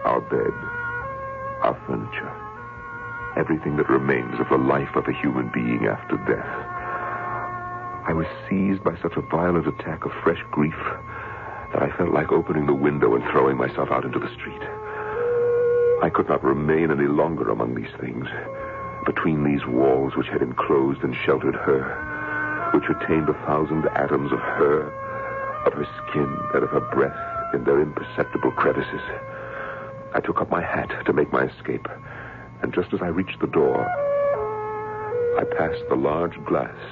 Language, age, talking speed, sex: English, 60-79, 160 wpm, male